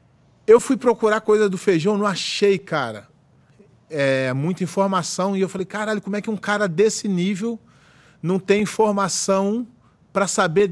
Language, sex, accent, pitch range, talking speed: Portuguese, male, Brazilian, 155-200 Hz, 150 wpm